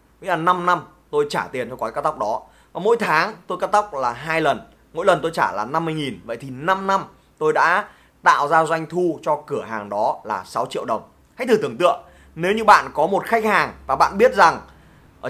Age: 20-39